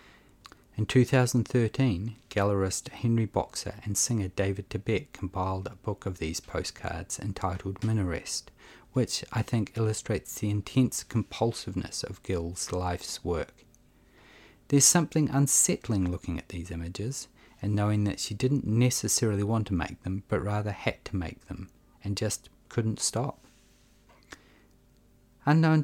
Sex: male